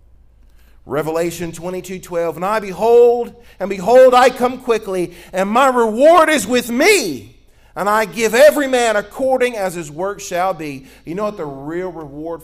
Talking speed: 160 wpm